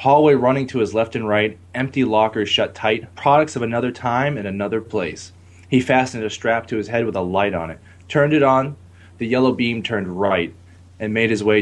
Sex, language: male, English